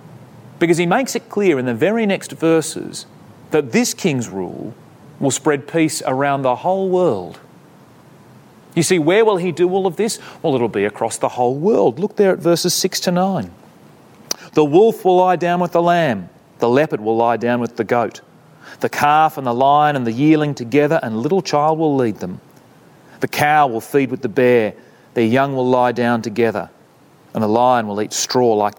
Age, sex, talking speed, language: 30-49, male, 200 wpm, English